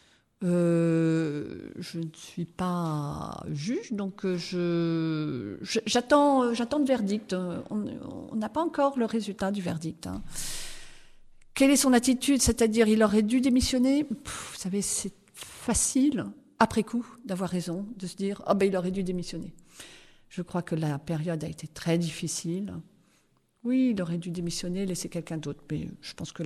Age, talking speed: 40-59, 165 wpm